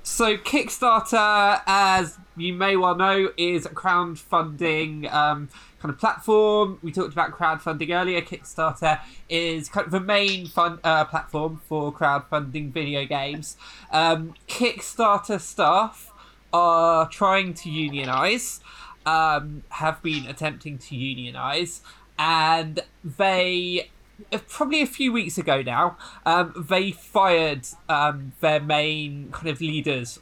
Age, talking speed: 20-39, 125 wpm